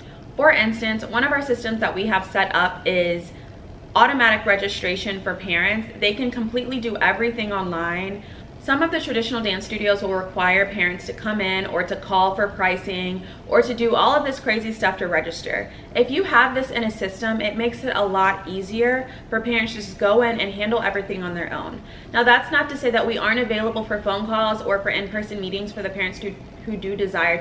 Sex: female